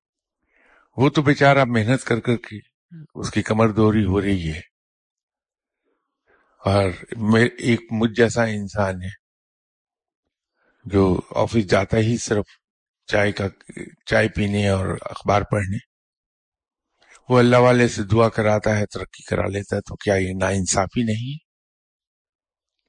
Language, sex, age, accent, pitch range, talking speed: English, male, 50-69, Indian, 100-125 Hz, 125 wpm